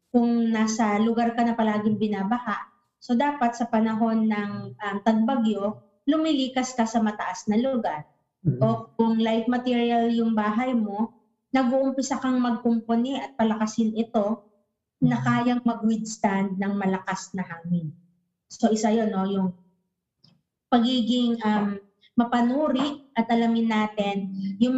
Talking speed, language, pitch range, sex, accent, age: 130 wpm, Filipino, 195-240 Hz, female, native, 20-39